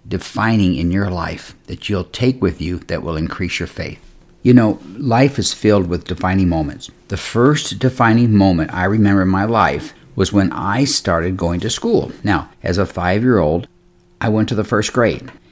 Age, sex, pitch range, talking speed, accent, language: 50-69, male, 90-115 Hz, 185 wpm, American, English